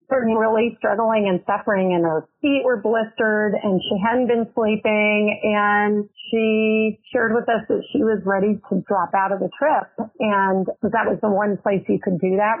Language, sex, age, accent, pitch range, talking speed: English, female, 40-59, American, 195-240 Hz, 185 wpm